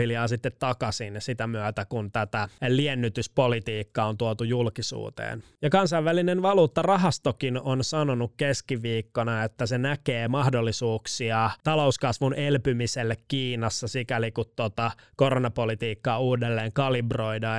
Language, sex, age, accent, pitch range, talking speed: Finnish, male, 20-39, native, 115-140 Hz, 105 wpm